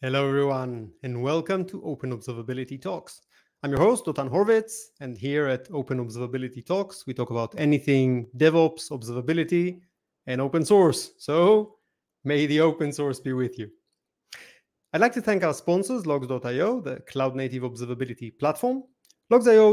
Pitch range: 135-190 Hz